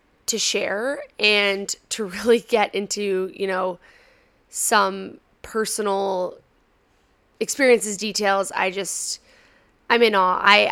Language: English